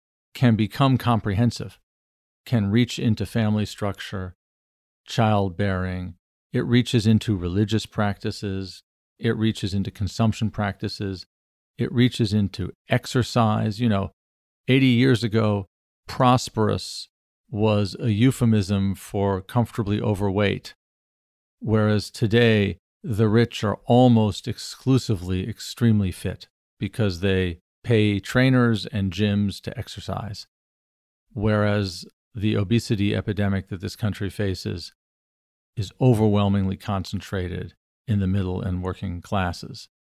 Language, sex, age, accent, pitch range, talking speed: English, male, 40-59, American, 95-115 Hz, 105 wpm